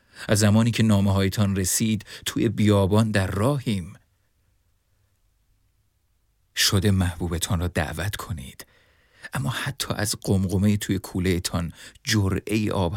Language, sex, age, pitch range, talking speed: Persian, male, 40-59, 95-110 Hz, 105 wpm